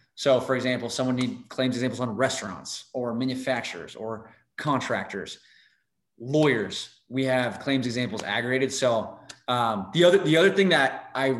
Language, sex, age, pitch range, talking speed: English, male, 20-39, 120-135 Hz, 145 wpm